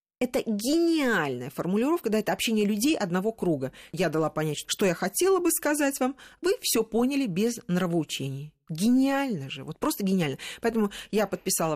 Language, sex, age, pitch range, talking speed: Russian, female, 40-59, 170-240 Hz, 160 wpm